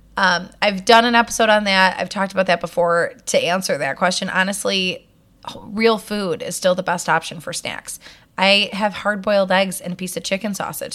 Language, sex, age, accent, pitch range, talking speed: English, female, 20-39, American, 175-210 Hz, 205 wpm